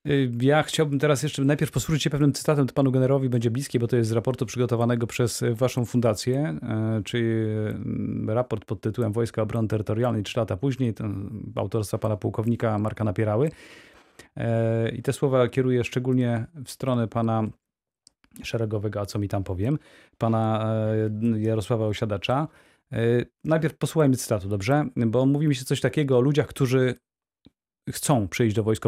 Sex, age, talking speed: male, 30-49, 150 wpm